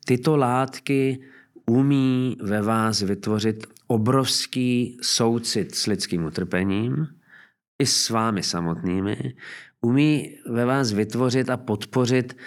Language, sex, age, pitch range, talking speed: Czech, male, 40-59, 105-125 Hz, 100 wpm